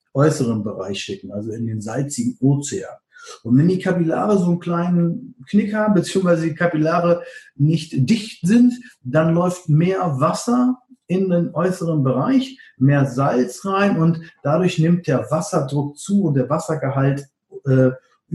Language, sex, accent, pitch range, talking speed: German, male, German, 130-175 Hz, 145 wpm